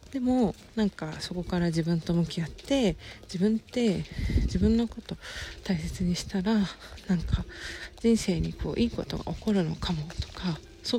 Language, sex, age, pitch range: Japanese, female, 40-59, 165-215 Hz